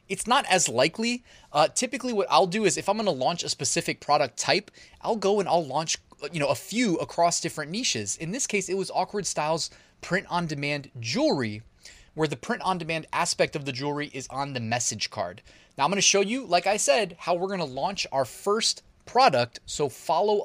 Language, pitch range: English, 145-190 Hz